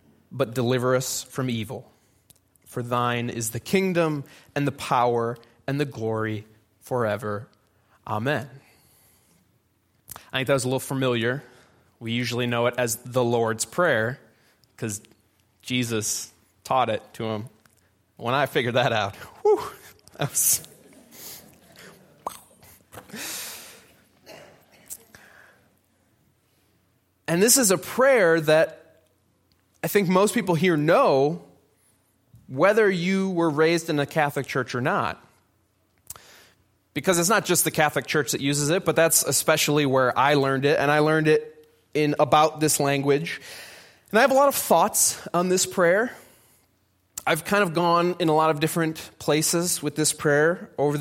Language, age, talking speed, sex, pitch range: English, 20-39, 135 wpm, male, 115-160 Hz